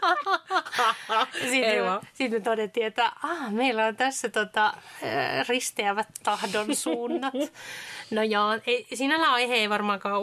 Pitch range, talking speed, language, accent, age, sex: 220-260 Hz, 80 wpm, Finnish, native, 30-49, female